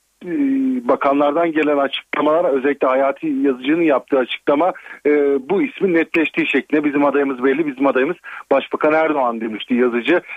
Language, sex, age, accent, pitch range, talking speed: Turkish, male, 40-59, native, 135-170 Hz, 120 wpm